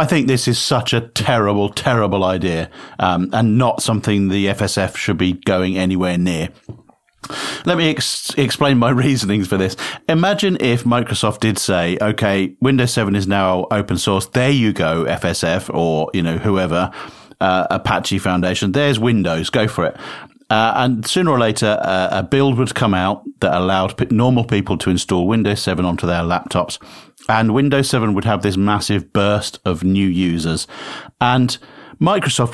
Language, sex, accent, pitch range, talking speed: English, male, British, 95-125 Hz, 170 wpm